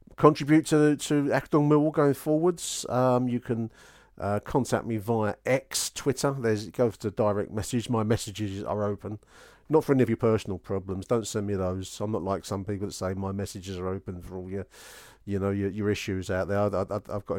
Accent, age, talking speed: British, 40-59, 205 wpm